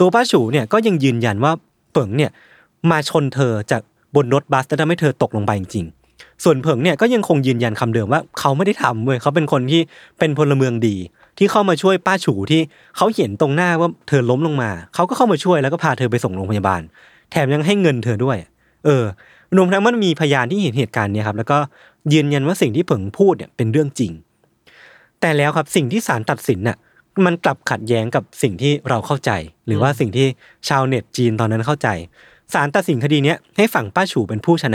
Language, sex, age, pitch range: Thai, male, 20-39, 115-165 Hz